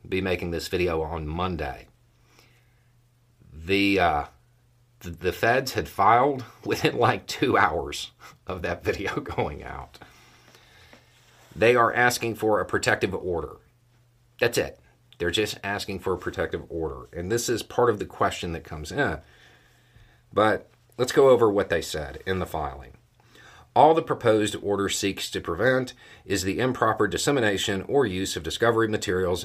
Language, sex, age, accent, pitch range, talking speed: English, male, 40-59, American, 90-120 Hz, 150 wpm